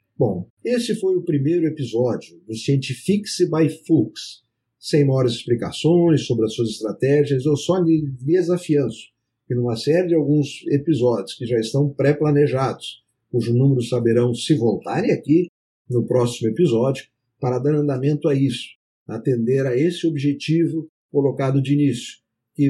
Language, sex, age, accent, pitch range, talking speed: Portuguese, male, 50-69, Brazilian, 125-155 Hz, 140 wpm